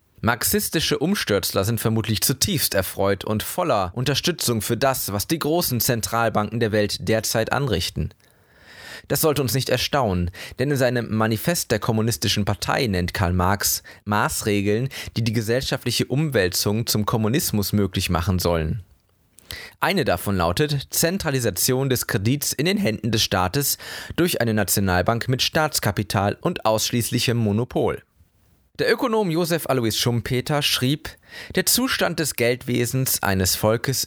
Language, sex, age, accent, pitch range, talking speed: German, male, 20-39, German, 100-135 Hz, 130 wpm